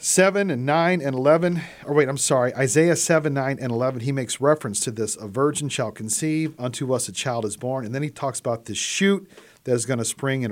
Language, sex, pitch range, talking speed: English, male, 130-175 Hz, 240 wpm